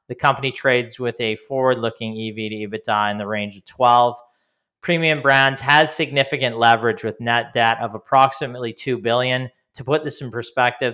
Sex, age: male, 40-59